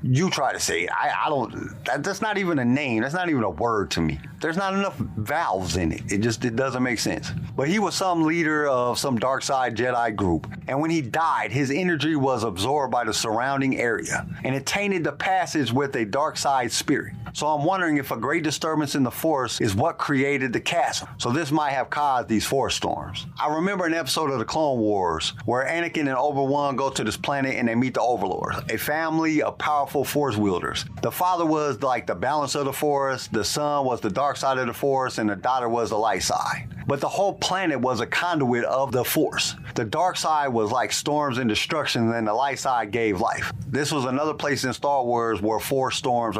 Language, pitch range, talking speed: English, 120-155 Hz, 225 wpm